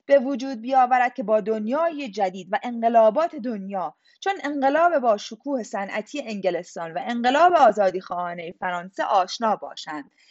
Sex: female